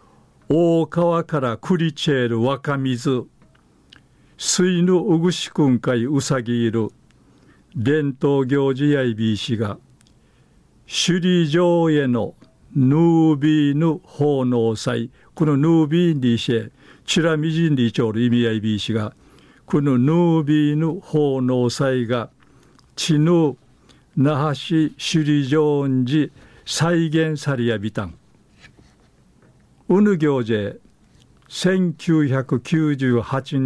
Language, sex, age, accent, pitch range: Japanese, male, 50-69, native, 125-160 Hz